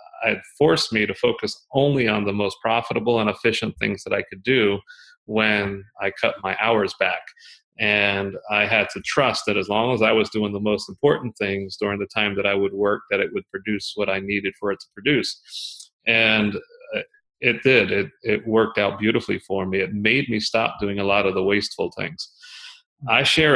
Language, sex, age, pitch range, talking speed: English, male, 30-49, 100-115 Hz, 205 wpm